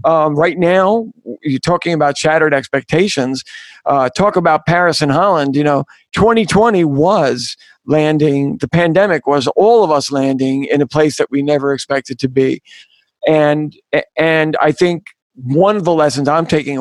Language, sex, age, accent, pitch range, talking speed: English, male, 50-69, American, 140-165 Hz, 160 wpm